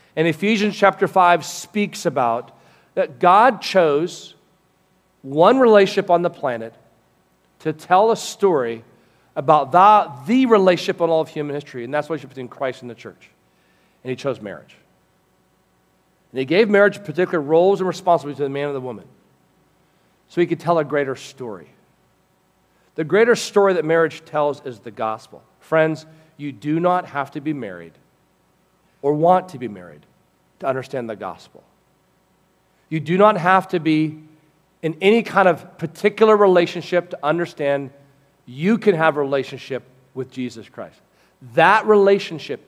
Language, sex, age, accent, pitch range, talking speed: English, male, 40-59, American, 140-205 Hz, 155 wpm